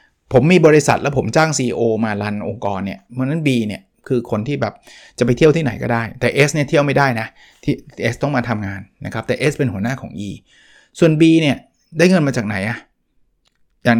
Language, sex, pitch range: Thai, male, 115-145 Hz